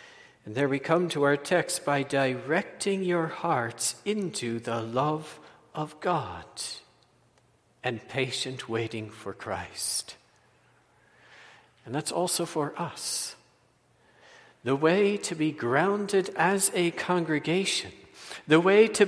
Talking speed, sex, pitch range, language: 115 wpm, male, 130-180 Hz, English